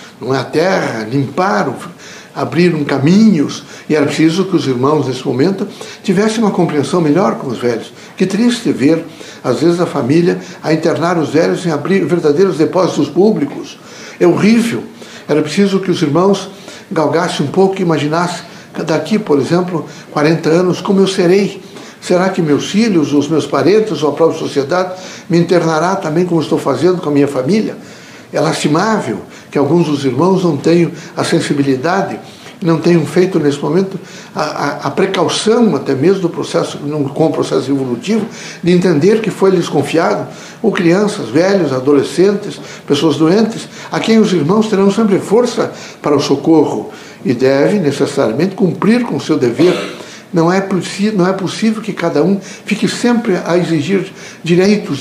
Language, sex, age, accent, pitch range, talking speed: Portuguese, male, 60-79, Brazilian, 150-195 Hz, 165 wpm